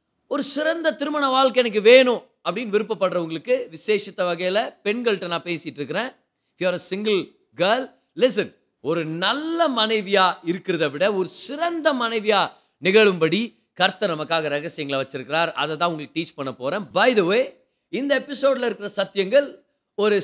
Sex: male